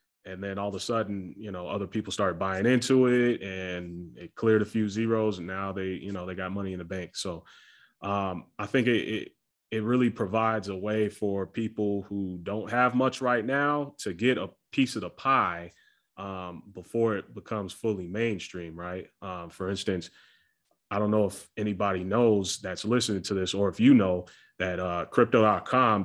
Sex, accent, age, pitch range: male, American, 30-49, 90-105 Hz